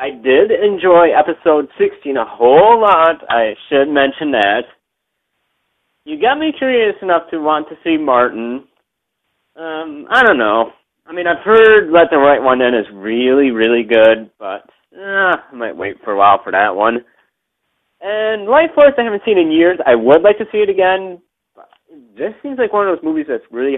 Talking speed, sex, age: 185 wpm, male, 30-49